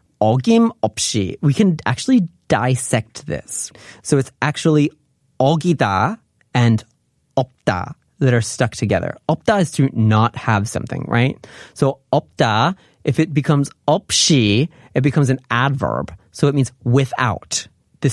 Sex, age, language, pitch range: male, 30-49, Korean, 120-155 Hz